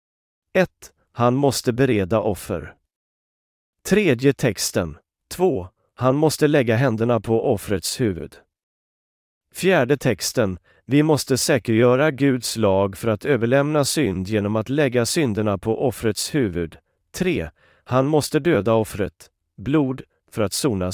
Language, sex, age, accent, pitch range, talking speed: Swedish, male, 40-59, native, 100-145 Hz, 120 wpm